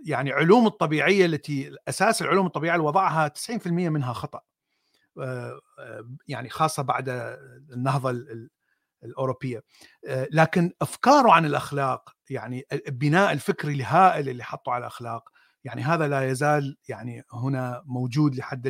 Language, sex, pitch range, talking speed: Arabic, male, 130-180 Hz, 115 wpm